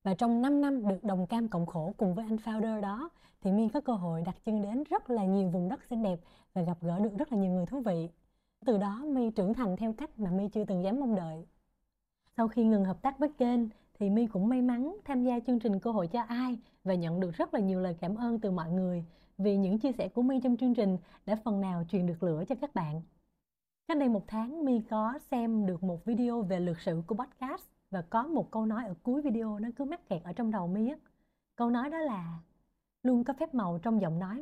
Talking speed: 255 wpm